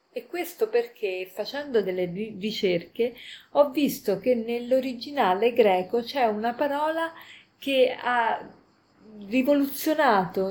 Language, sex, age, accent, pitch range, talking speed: Italian, female, 40-59, native, 185-270 Hz, 95 wpm